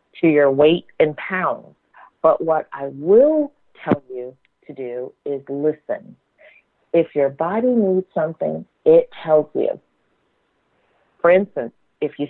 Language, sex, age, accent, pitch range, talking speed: English, female, 40-59, American, 130-165 Hz, 130 wpm